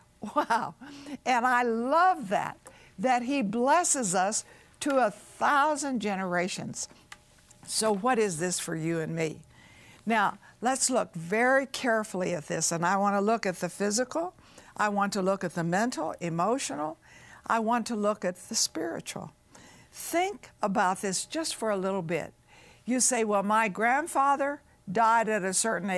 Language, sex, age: English, female, 60-79